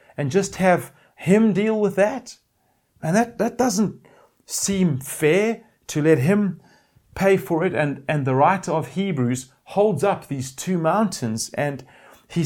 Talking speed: 155 wpm